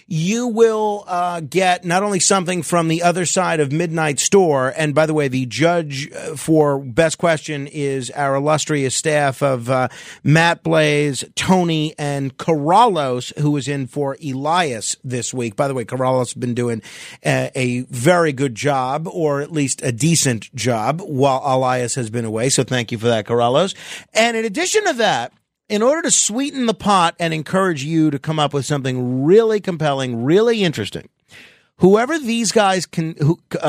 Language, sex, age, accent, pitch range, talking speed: English, male, 40-59, American, 140-195 Hz, 175 wpm